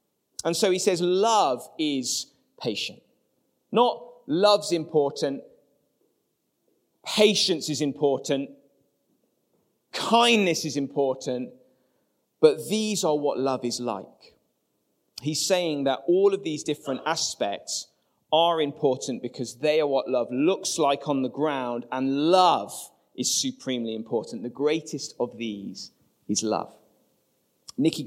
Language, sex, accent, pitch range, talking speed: English, male, British, 125-170 Hz, 120 wpm